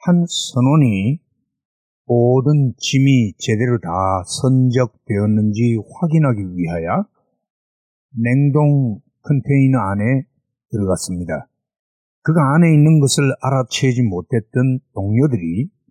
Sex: male